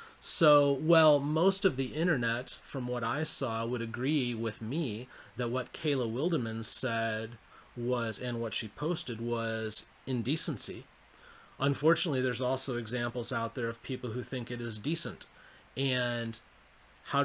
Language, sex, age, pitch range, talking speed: English, male, 30-49, 110-135 Hz, 145 wpm